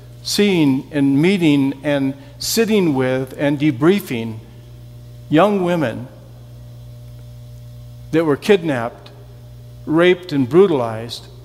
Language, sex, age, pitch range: English, male, 60-79, 120-170 Hz